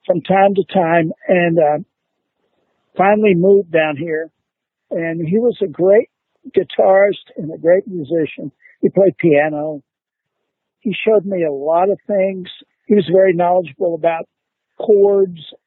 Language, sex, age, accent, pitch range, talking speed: English, male, 60-79, American, 155-205 Hz, 140 wpm